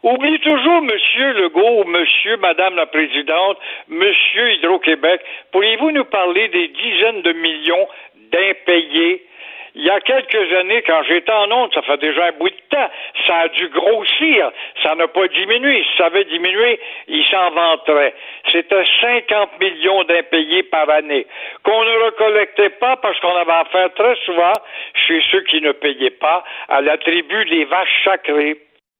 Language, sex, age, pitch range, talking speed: French, male, 60-79, 170-245 Hz, 160 wpm